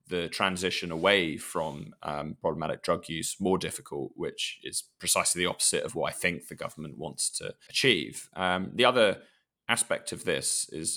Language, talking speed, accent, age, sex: English, 170 wpm, British, 20-39, male